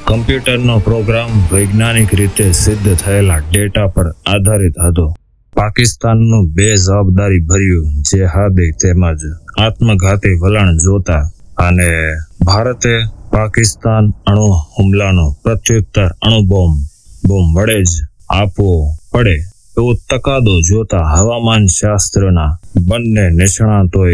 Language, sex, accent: Hindi, male, native